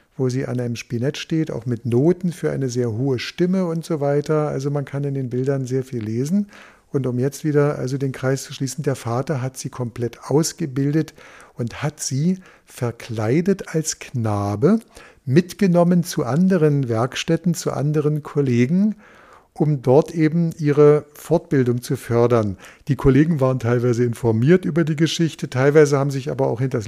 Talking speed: 165 wpm